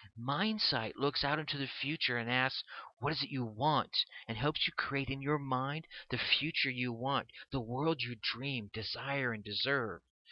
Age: 40-59